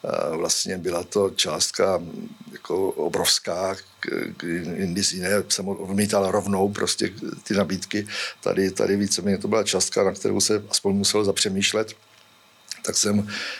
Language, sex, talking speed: Czech, male, 125 wpm